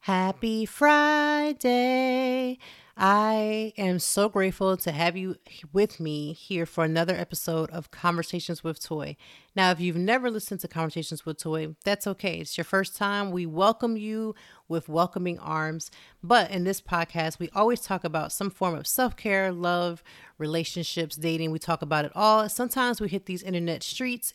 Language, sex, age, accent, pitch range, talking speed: English, female, 30-49, American, 165-200 Hz, 165 wpm